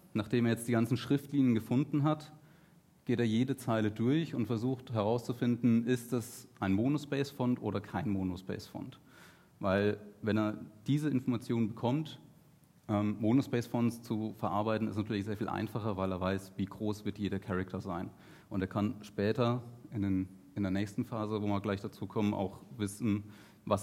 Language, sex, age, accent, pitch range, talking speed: German, male, 30-49, German, 95-125 Hz, 160 wpm